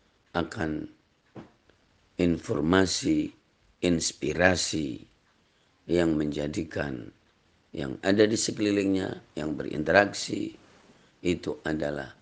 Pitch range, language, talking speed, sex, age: 85-110 Hz, Indonesian, 65 wpm, male, 50-69